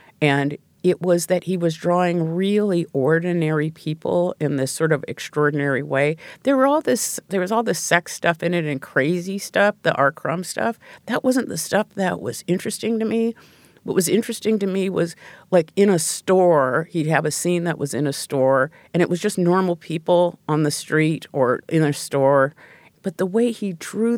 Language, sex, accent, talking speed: English, female, American, 200 wpm